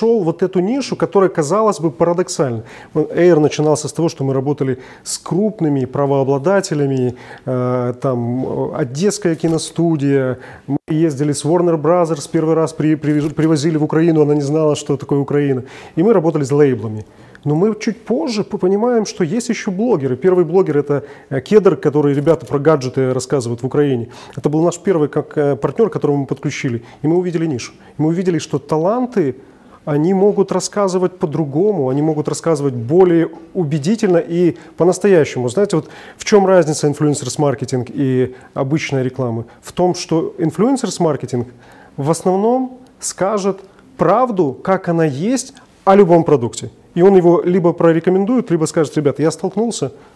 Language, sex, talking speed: Russian, male, 150 wpm